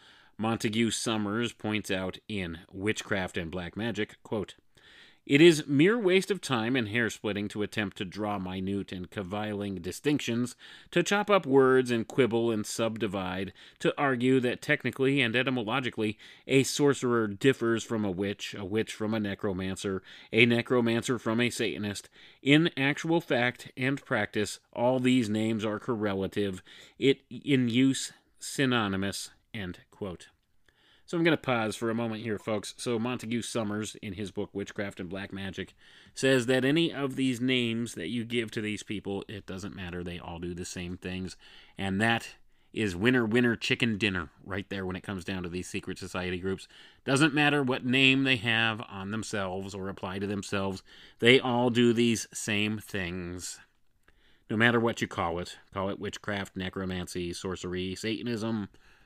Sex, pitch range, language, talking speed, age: male, 95-125 Hz, English, 165 wpm, 30-49